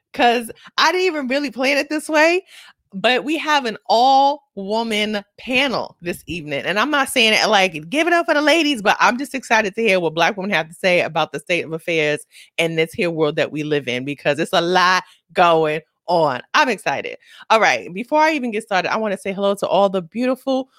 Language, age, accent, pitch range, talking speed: English, 20-39, American, 195-285 Hz, 225 wpm